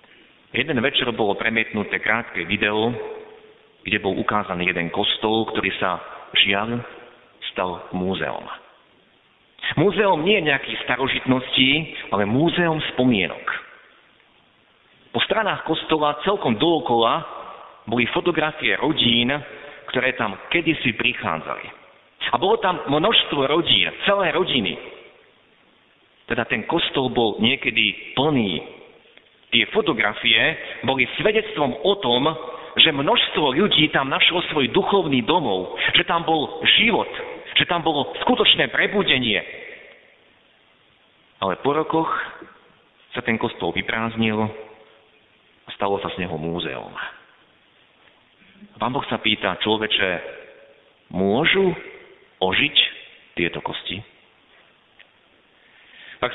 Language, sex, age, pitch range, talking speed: Slovak, male, 50-69, 110-180 Hz, 100 wpm